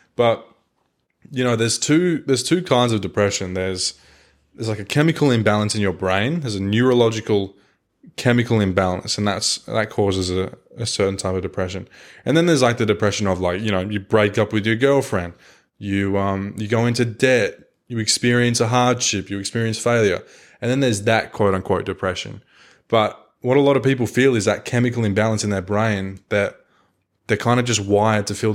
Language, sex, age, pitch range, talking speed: English, male, 20-39, 100-120 Hz, 195 wpm